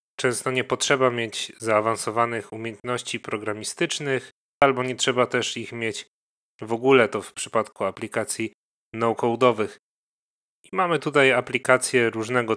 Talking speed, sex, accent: 120 wpm, male, native